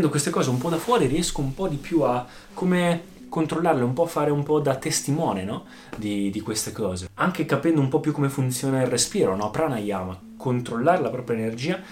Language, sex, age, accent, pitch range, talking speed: Italian, male, 20-39, native, 105-140 Hz, 215 wpm